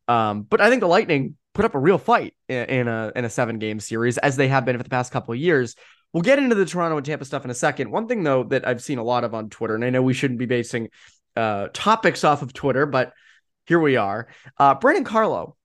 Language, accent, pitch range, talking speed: English, American, 120-155 Hz, 265 wpm